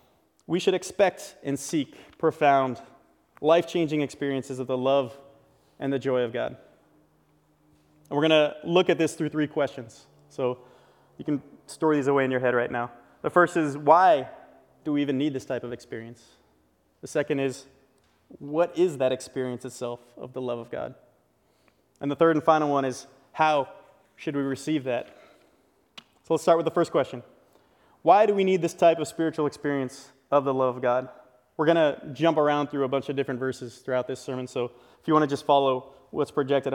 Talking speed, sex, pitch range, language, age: 195 wpm, male, 130-160 Hz, English, 20-39